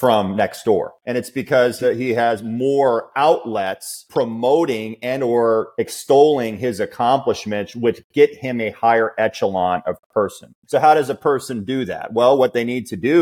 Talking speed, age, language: 170 wpm, 30-49, English